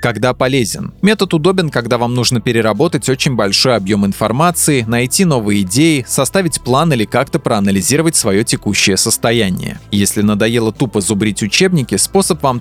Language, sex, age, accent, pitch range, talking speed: Russian, male, 20-39, native, 110-160 Hz, 145 wpm